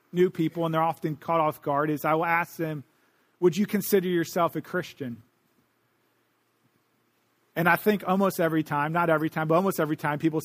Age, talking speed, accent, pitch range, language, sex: 40-59, 190 wpm, American, 165-220 Hz, English, male